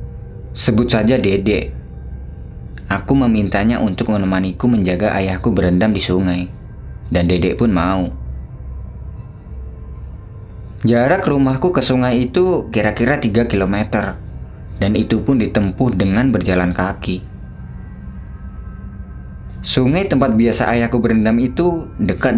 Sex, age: male, 20-39